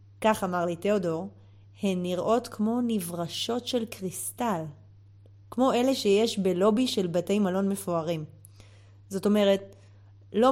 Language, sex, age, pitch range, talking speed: Hebrew, female, 30-49, 160-230 Hz, 120 wpm